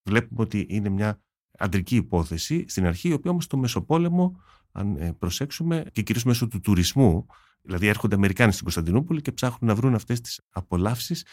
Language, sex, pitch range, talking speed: Greek, male, 85-115 Hz, 170 wpm